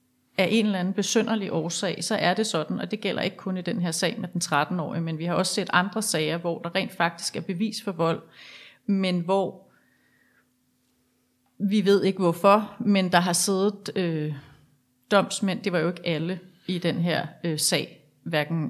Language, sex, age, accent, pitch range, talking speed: Danish, female, 30-49, native, 165-205 Hz, 195 wpm